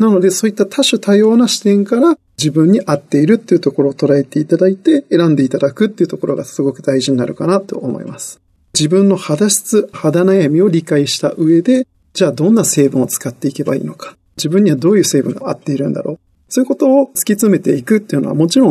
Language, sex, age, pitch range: Japanese, male, 40-59, 150-215 Hz